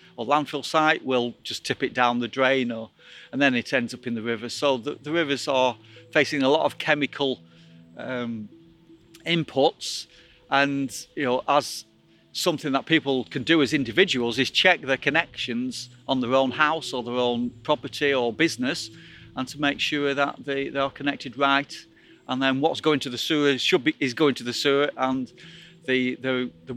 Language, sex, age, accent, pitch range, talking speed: English, male, 40-59, British, 120-145 Hz, 190 wpm